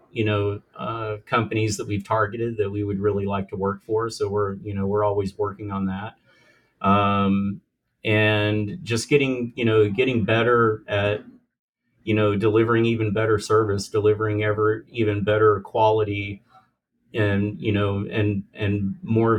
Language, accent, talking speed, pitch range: English, American, 155 wpm, 100-115 Hz